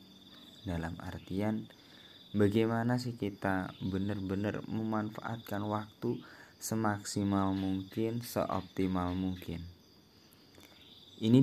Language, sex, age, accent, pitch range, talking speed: Indonesian, male, 20-39, native, 90-105 Hz, 70 wpm